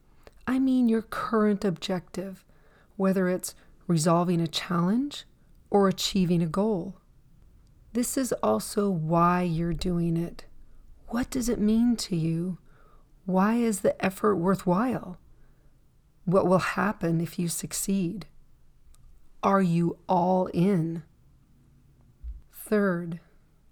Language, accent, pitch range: English, American, 170-205 Hz